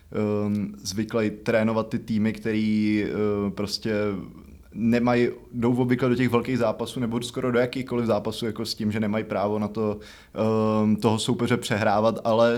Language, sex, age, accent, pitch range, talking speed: Czech, male, 20-39, native, 110-120 Hz, 140 wpm